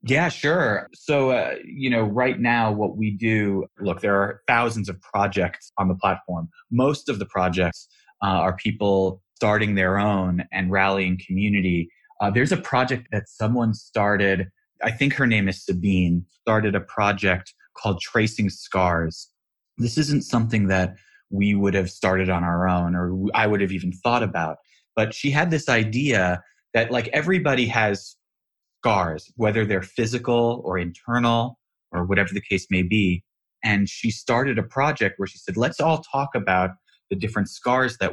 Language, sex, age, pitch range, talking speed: English, male, 20-39, 95-120 Hz, 170 wpm